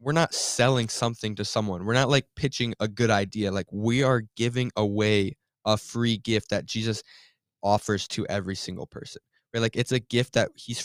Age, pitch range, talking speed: 10-29, 100-120 Hz, 195 wpm